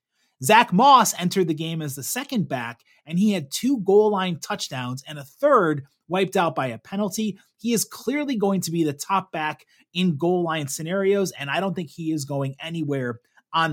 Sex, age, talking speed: male, 30-49, 200 wpm